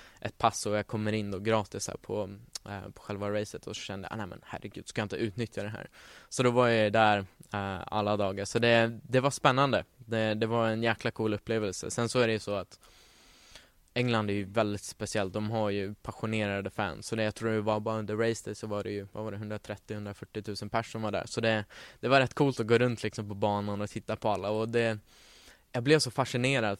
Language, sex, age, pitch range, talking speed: Swedish, male, 20-39, 105-115 Hz, 240 wpm